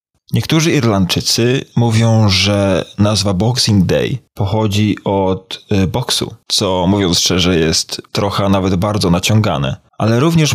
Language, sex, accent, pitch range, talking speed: Polish, male, native, 95-110 Hz, 115 wpm